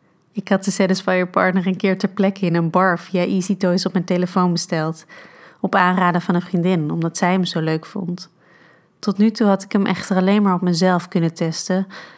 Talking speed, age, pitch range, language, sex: 210 wpm, 30-49, 175-195 Hz, Dutch, female